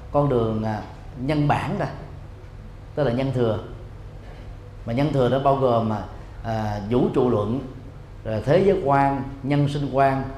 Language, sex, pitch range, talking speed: Vietnamese, male, 110-135 Hz, 155 wpm